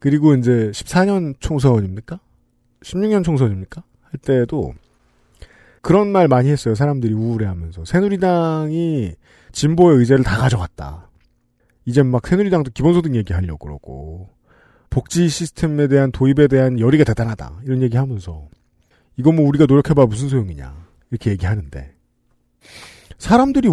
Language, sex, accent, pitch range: Korean, male, native, 120-190 Hz